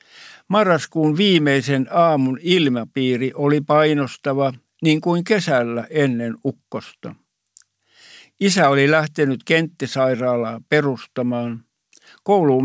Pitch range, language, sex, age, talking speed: 125-155 Hz, Finnish, male, 60-79, 80 wpm